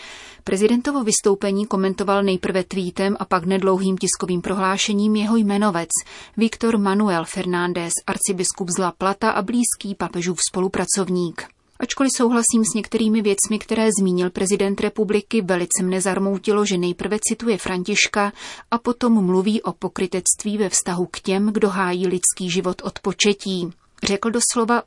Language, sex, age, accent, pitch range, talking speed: Czech, female, 30-49, native, 185-215 Hz, 135 wpm